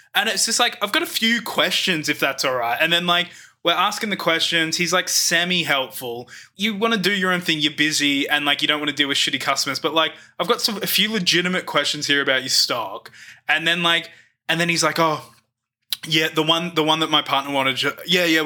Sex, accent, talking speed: male, Australian, 240 wpm